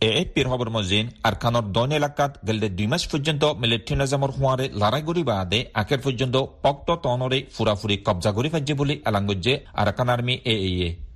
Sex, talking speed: male, 75 wpm